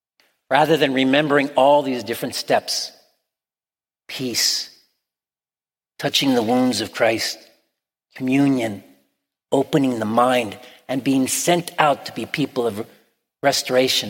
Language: English